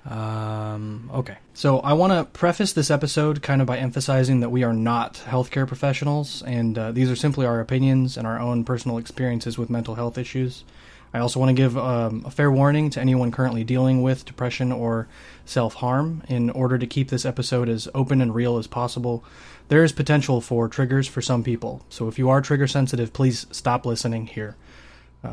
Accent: American